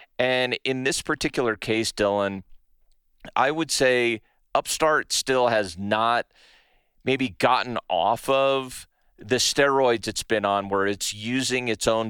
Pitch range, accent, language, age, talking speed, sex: 115-155 Hz, American, English, 40-59, 135 wpm, male